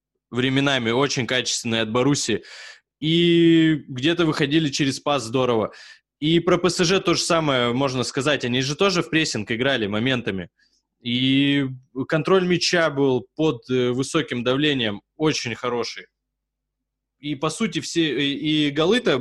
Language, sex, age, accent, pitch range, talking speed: Russian, male, 20-39, native, 120-150 Hz, 130 wpm